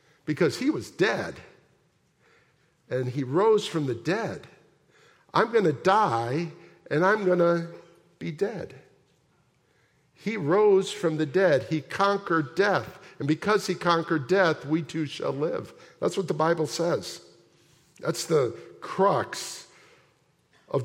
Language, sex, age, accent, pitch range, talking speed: English, male, 50-69, American, 130-180 Hz, 125 wpm